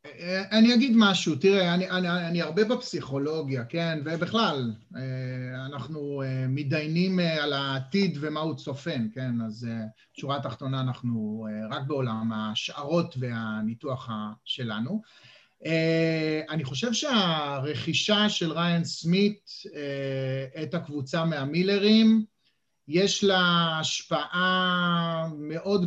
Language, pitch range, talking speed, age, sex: Hebrew, 140-185 Hz, 95 wpm, 30-49, male